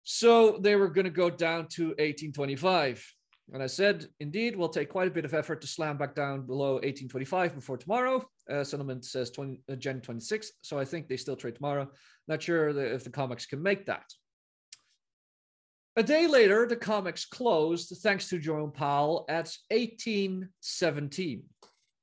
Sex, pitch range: male, 140-195 Hz